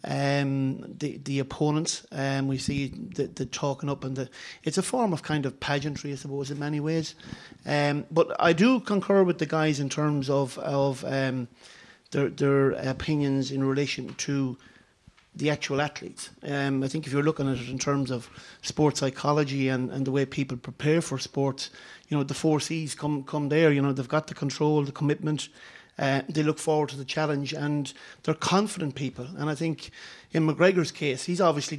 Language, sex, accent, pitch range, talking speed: English, male, Irish, 140-155 Hz, 195 wpm